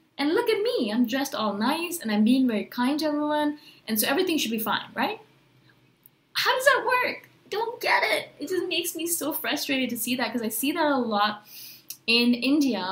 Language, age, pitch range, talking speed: English, 20-39, 230-290 Hz, 215 wpm